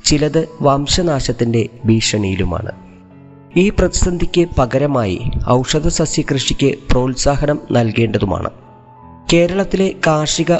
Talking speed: 75 wpm